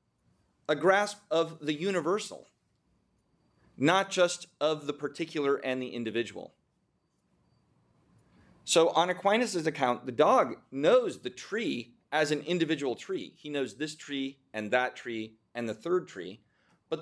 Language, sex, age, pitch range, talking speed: English, male, 30-49, 135-180 Hz, 135 wpm